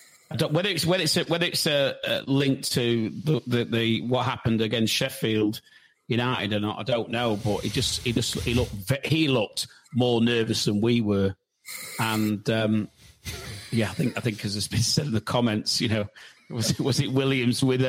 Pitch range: 110-135 Hz